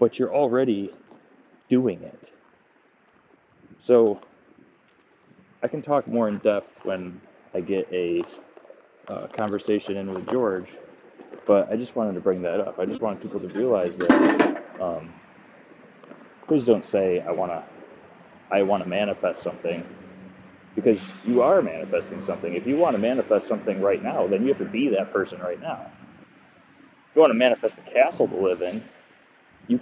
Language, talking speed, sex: English, 160 wpm, male